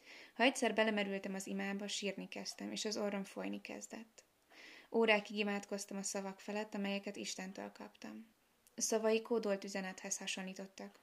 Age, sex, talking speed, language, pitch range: 20-39, female, 130 wpm, Hungarian, 190-220 Hz